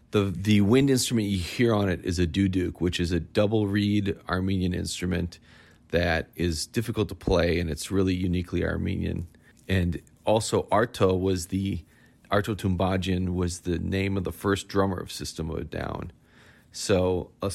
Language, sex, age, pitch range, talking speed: English, male, 40-59, 90-105 Hz, 170 wpm